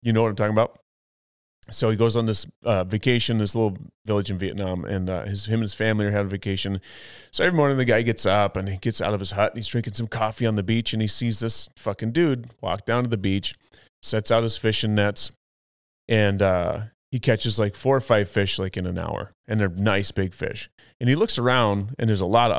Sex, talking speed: male, 250 wpm